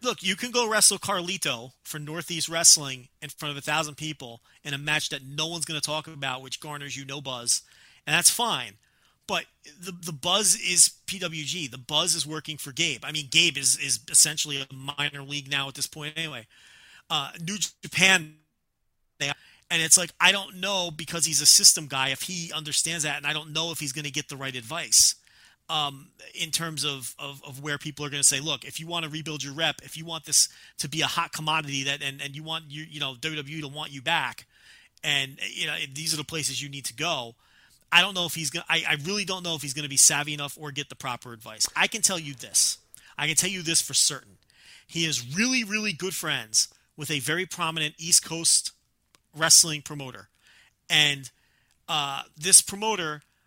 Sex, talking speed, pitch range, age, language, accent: male, 220 wpm, 140-170 Hz, 30-49, English, American